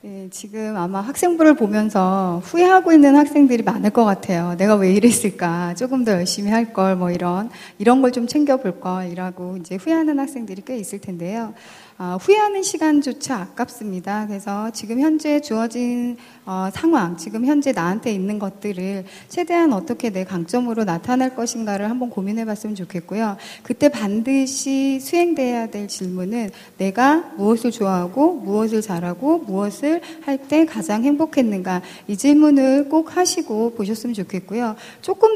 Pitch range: 195-275 Hz